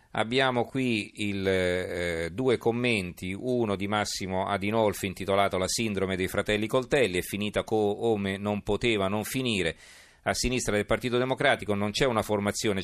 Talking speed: 145 wpm